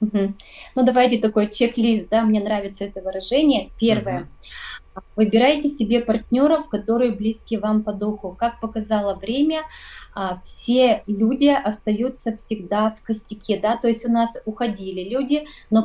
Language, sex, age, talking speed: Russian, female, 20-39, 135 wpm